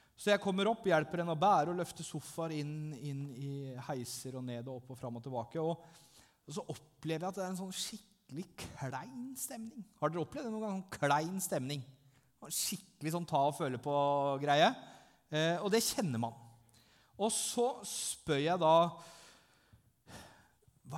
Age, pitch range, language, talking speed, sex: 30-49, 125-170 Hz, English, 170 wpm, male